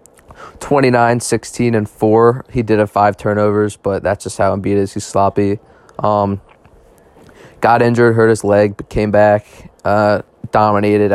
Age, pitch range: 20-39, 100-115 Hz